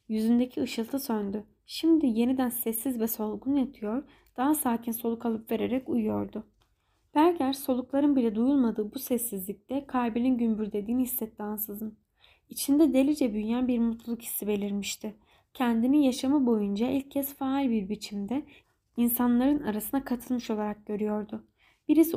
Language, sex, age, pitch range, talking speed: Turkish, female, 10-29, 220-270 Hz, 120 wpm